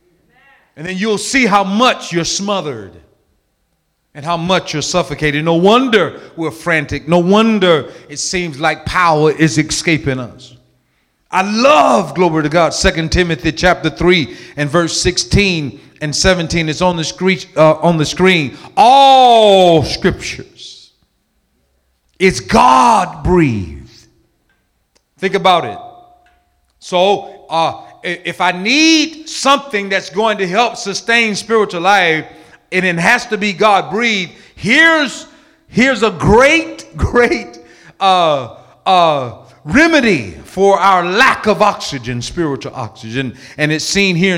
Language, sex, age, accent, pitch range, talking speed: English, male, 40-59, American, 155-210 Hz, 130 wpm